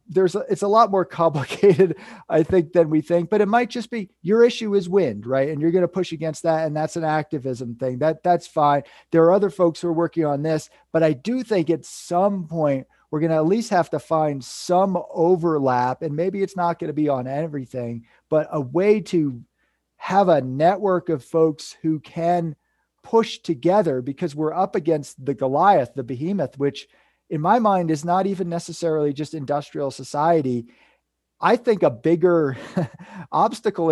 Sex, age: male, 40-59